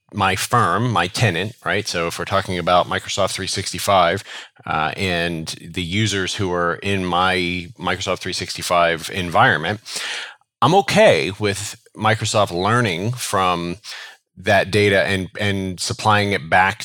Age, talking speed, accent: 30-49, 130 wpm, American